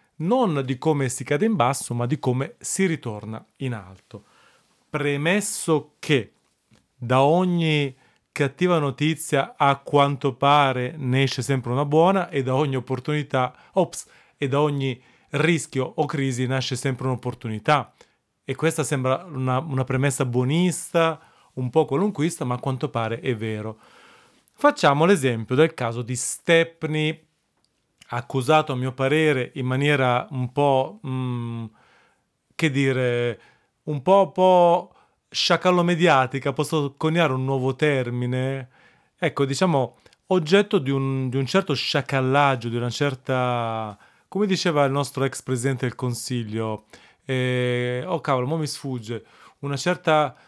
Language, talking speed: Italian, 135 wpm